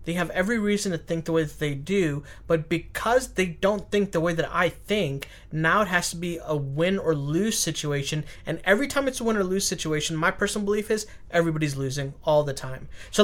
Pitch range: 160-230 Hz